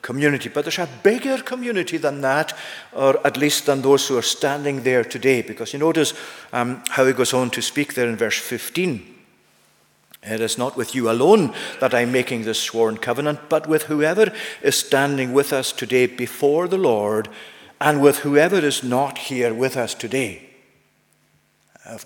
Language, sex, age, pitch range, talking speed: English, male, 50-69, 130-165 Hz, 175 wpm